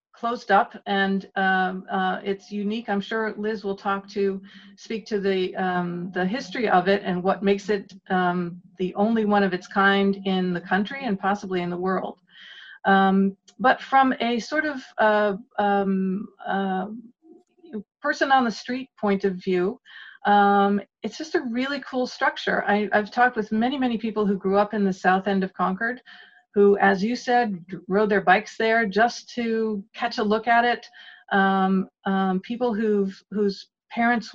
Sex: female